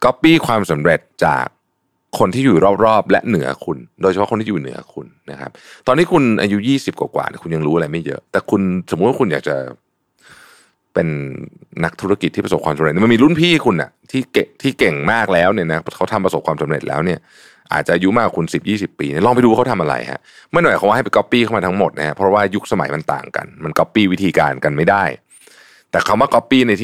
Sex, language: male, Thai